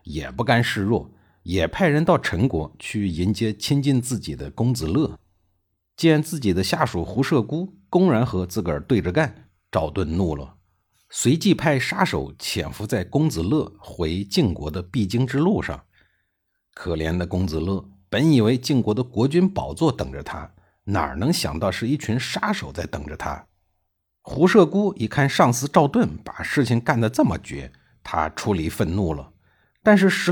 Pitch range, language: 85-140 Hz, Chinese